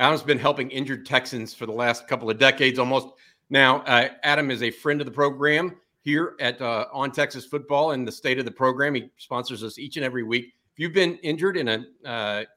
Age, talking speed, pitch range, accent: 50-69, 225 wpm, 120-150 Hz, American